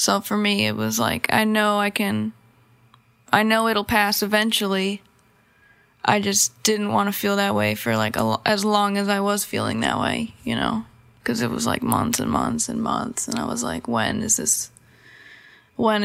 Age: 20-39